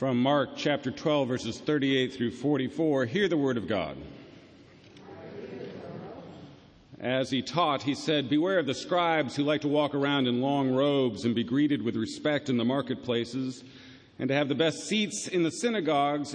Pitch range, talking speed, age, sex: 125-150 Hz, 175 wpm, 50-69, male